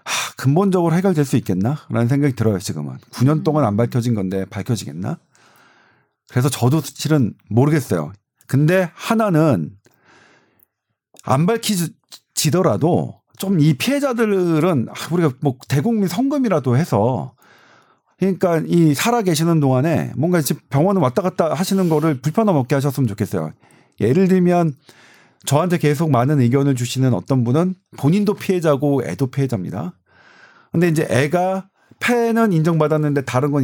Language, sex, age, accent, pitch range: Korean, male, 40-59, native, 130-190 Hz